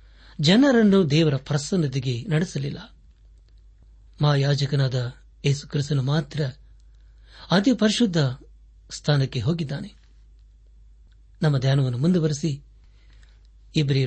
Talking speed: 70 wpm